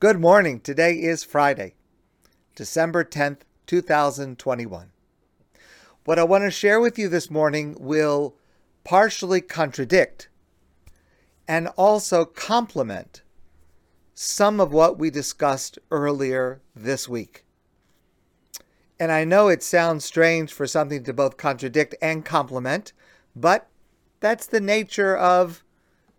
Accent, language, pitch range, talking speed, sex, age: American, English, 140-205 Hz, 110 wpm, male, 50-69